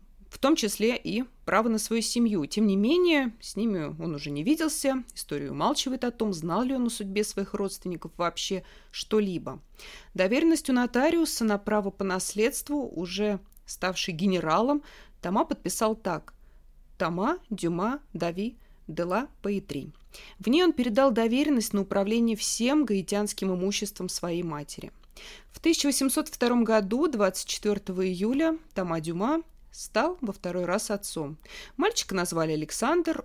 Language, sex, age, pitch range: Russian, female, 30-49, 185-245 Hz